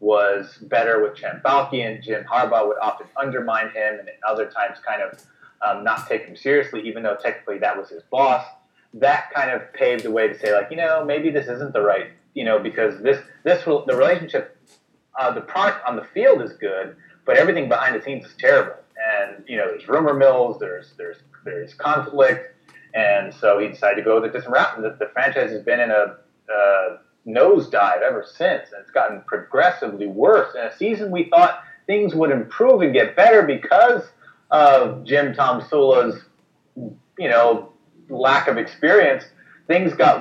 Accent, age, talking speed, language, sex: American, 30-49, 190 wpm, English, male